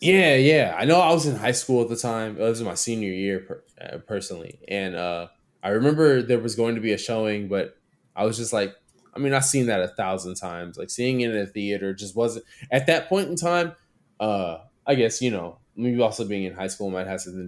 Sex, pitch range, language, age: male, 100-140 Hz, English, 20-39